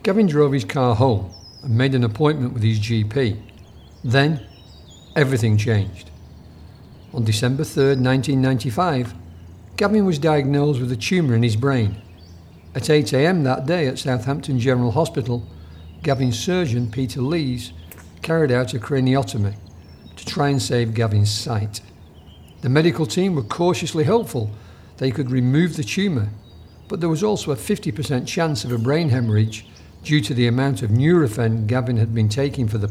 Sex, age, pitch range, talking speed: male, 50-69, 105-145 Hz, 155 wpm